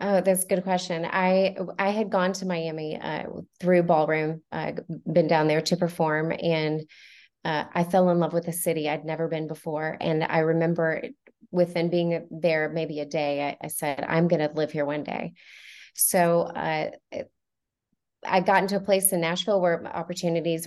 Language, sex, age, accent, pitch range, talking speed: English, female, 30-49, American, 160-190 Hz, 185 wpm